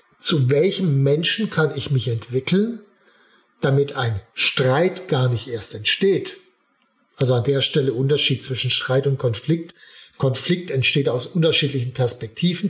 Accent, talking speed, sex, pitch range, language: German, 130 wpm, male, 135-170 Hz, German